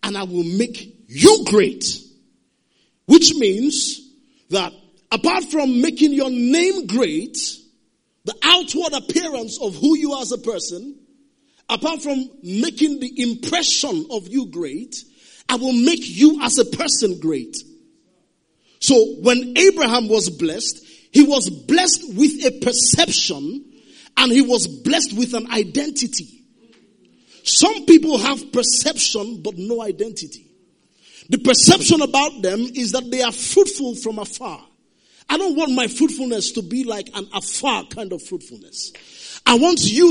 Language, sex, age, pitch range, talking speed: English, male, 40-59, 230-300 Hz, 140 wpm